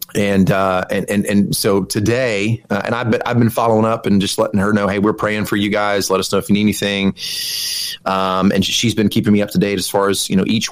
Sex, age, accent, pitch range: male, 30-49, American, 95-110 Hz